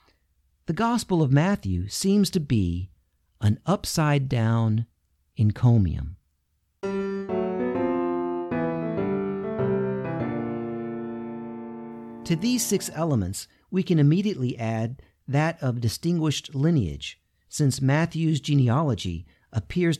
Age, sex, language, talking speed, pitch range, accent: 50-69, male, English, 80 wpm, 95-145 Hz, American